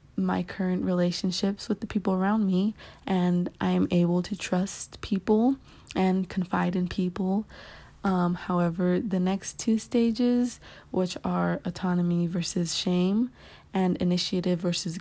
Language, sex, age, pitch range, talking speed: English, female, 20-39, 180-200 Hz, 130 wpm